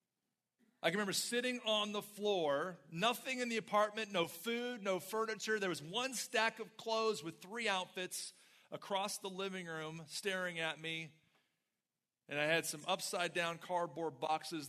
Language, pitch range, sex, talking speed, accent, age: English, 155-220 Hz, male, 160 wpm, American, 40-59